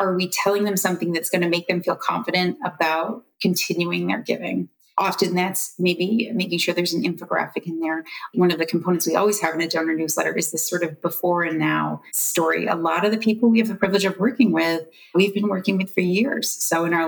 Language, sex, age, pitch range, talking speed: English, female, 30-49, 165-195 Hz, 230 wpm